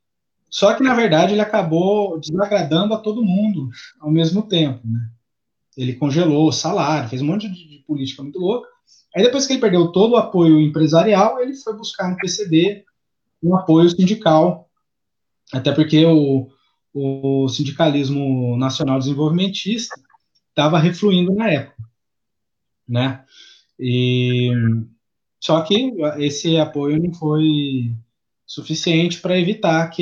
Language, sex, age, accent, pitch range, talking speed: Portuguese, male, 20-39, Brazilian, 135-180 Hz, 130 wpm